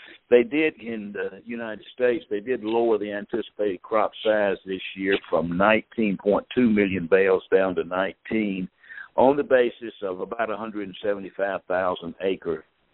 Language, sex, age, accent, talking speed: English, male, 60-79, American, 130 wpm